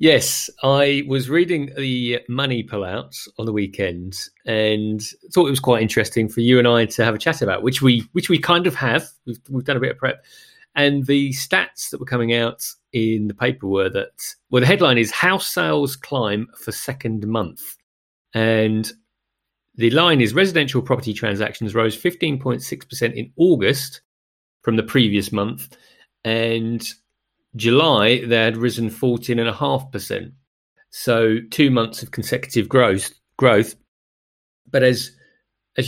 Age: 30-49